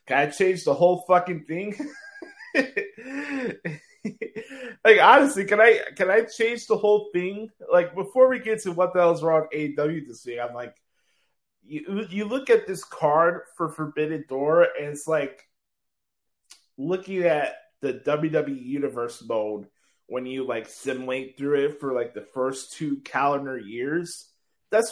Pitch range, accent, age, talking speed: 140-215 Hz, American, 20-39, 150 wpm